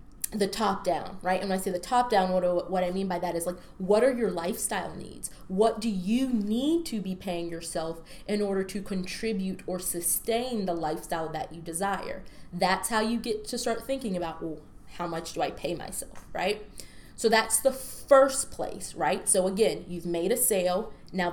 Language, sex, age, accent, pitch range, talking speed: English, female, 20-39, American, 175-230 Hz, 205 wpm